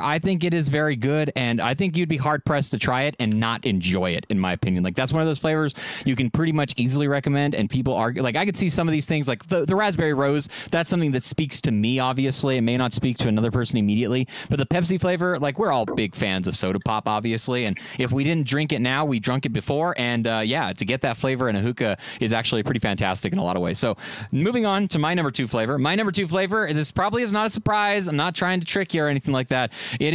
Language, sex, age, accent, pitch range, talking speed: English, male, 30-49, American, 130-175 Hz, 275 wpm